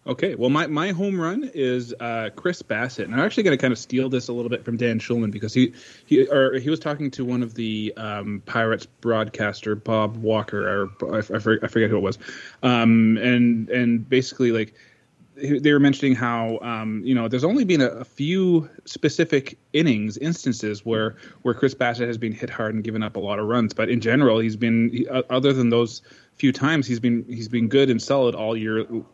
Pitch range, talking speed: 110-130 Hz, 215 wpm